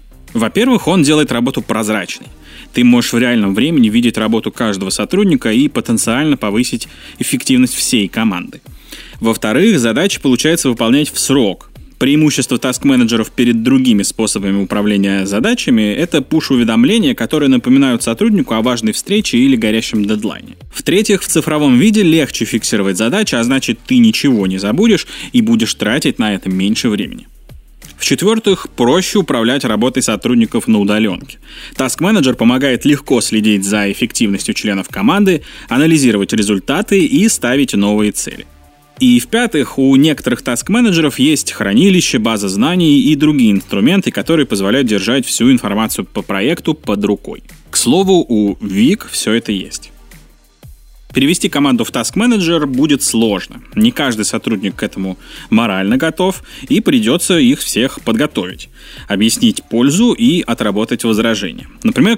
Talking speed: 135 wpm